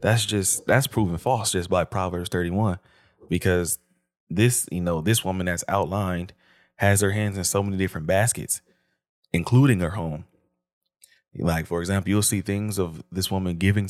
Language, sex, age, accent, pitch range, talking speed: English, male, 20-39, American, 85-110 Hz, 165 wpm